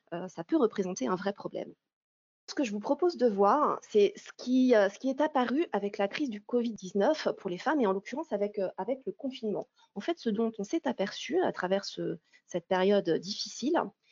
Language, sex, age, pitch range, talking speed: French, female, 30-49, 190-275 Hz, 205 wpm